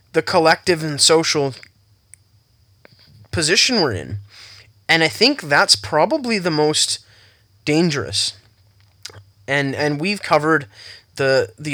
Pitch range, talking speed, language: 105-150 Hz, 105 wpm, English